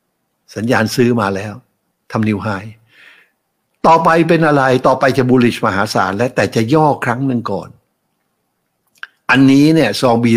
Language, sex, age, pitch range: Thai, male, 60-79, 110-135 Hz